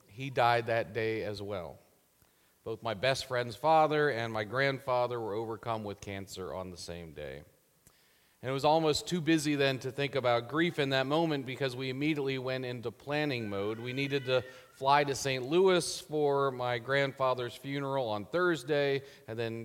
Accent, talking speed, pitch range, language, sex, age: American, 175 wpm, 110-140 Hz, English, male, 40-59